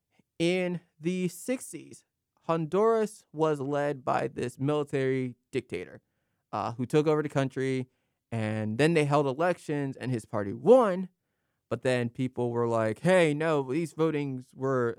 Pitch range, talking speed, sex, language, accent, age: 120-175 Hz, 140 wpm, male, English, American, 20-39